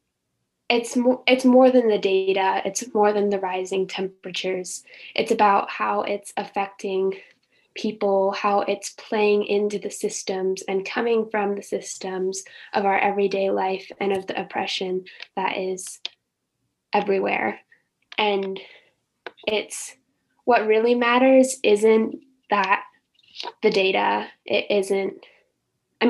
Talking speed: 120 wpm